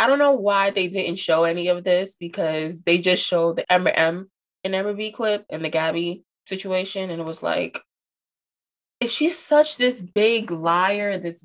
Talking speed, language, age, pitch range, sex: 190 wpm, English, 20-39, 170-210 Hz, female